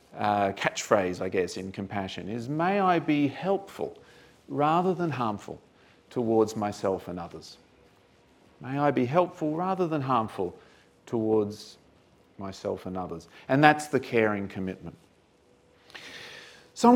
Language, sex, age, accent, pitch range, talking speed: English, male, 40-59, Australian, 100-170 Hz, 125 wpm